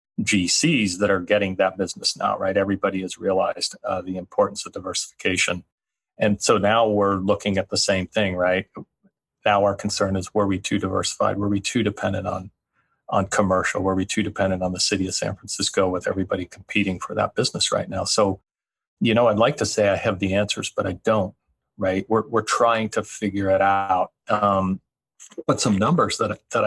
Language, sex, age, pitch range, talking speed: English, male, 40-59, 95-105 Hz, 195 wpm